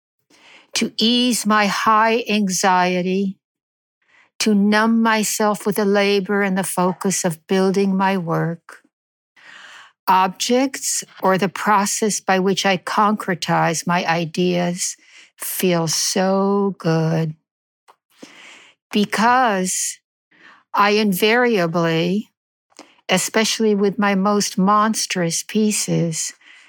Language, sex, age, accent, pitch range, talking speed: English, female, 60-79, American, 175-210 Hz, 90 wpm